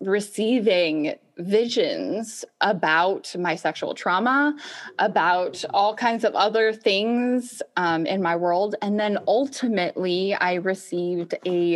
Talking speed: 110 wpm